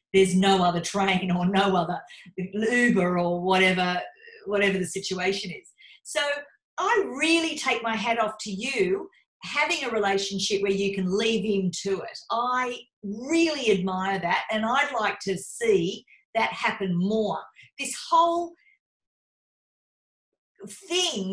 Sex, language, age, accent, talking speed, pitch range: female, English, 50-69, Australian, 135 wpm, 200-295 Hz